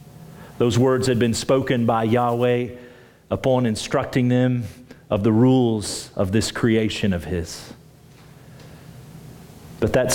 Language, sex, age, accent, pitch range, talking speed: English, male, 40-59, American, 120-160 Hz, 120 wpm